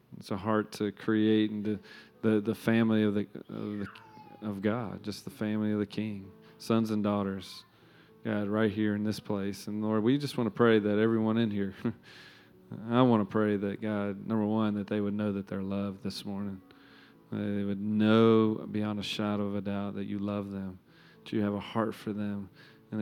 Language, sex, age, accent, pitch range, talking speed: English, male, 40-59, American, 100-110 Hz, 200 wpm